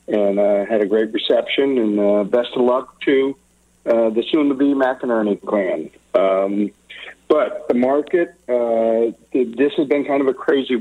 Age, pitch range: 50-69, 110-145 Hz